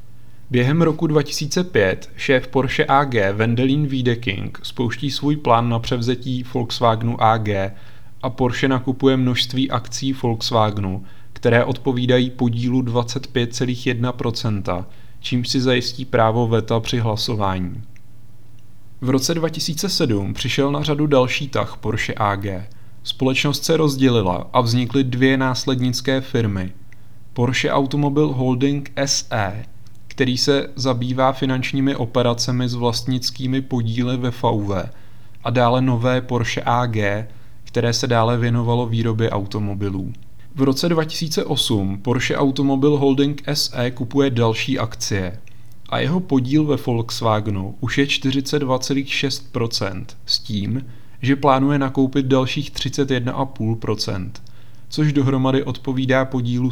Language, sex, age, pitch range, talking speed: Czech, male, 30-49, 115-135 Hz, 110 wpm